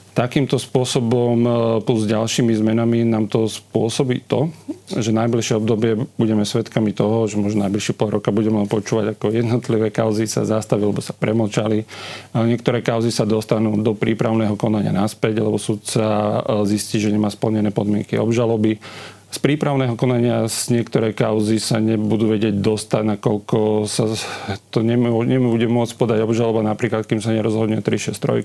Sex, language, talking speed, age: male, Slovak, 150 wpm, 40-59